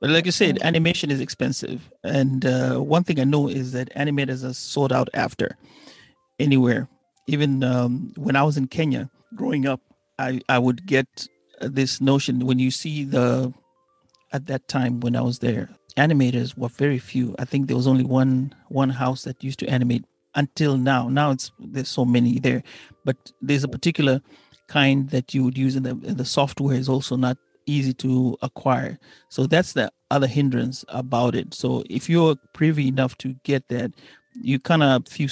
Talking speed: 190 wpm